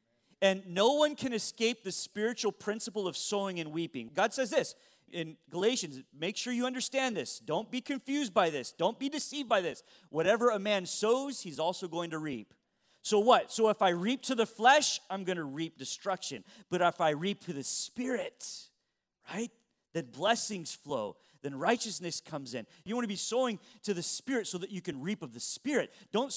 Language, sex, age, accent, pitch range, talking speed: English, male, 40-59, American, 155-230 Hz, 200 wpm